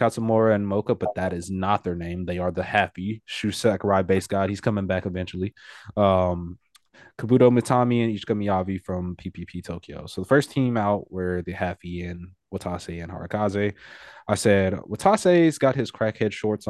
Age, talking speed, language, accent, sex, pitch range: 20-39, 175 wpm, English, American, male, 90-110 Hz